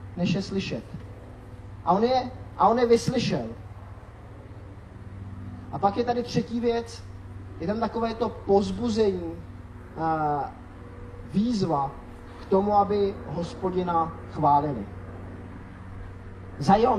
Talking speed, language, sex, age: 105 wpm, Czech, male, 30-49